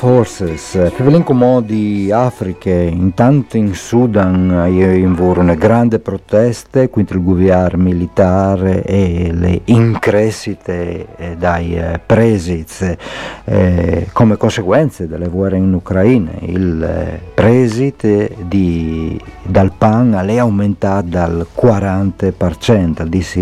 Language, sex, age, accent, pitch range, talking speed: Italian, male, 50-69, native, 90-110 Hz, 90 wpm